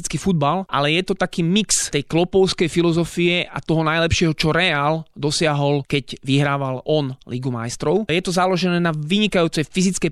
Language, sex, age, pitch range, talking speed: Slovak, male, 20-39, 145-175 Hz, 155 wpm